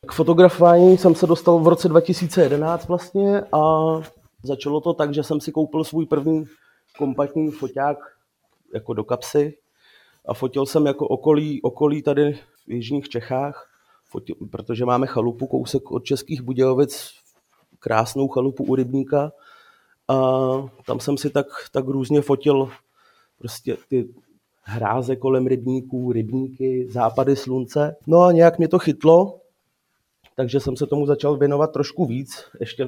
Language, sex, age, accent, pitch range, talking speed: Czech, male, 30-49, native, 125-150 Hz, 140 wpm